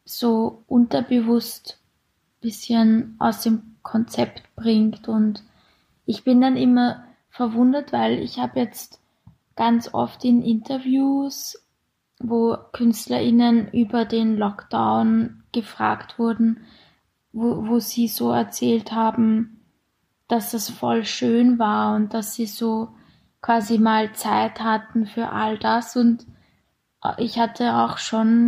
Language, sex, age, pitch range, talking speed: German, female, 20-39, 220-235 Hz, 115 wpm